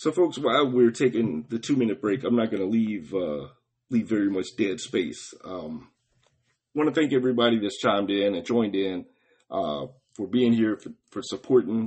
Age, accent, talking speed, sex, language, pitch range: 40-59, American, 190 wpm, male, English, 110-135 Hz